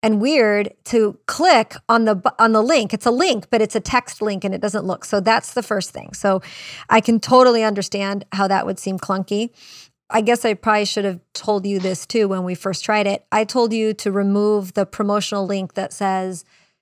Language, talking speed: English, 220 wpm